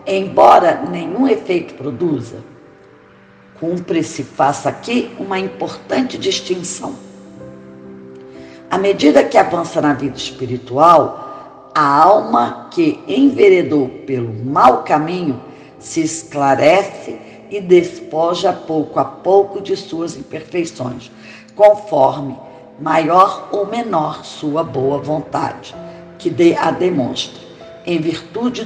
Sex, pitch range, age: female, 135-200 Hz, 50-69